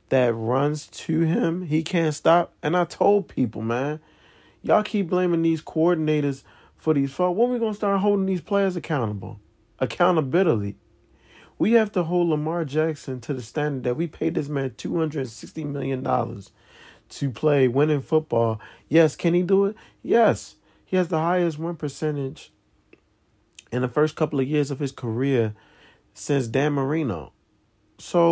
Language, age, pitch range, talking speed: English, 40-59, 125-170 Hz, 160 wpm